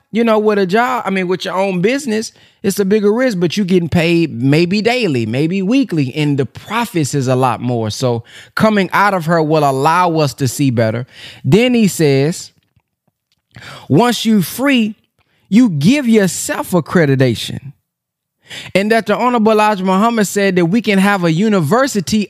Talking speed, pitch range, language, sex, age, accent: 170 wpm, 155-225 Hz, English, male, 20-39, American